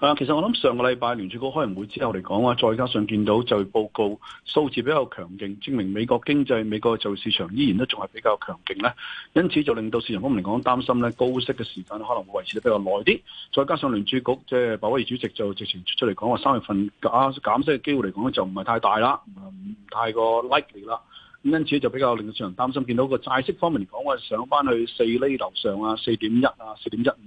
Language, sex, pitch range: Chinese, male, 110-140 Hz